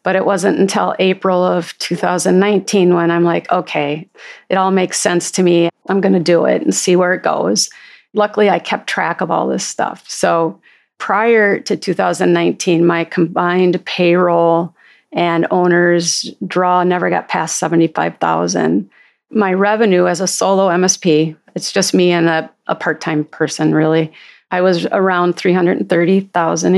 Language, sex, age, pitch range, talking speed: English, female, 40-59, 170-190 Hz, 150 wpm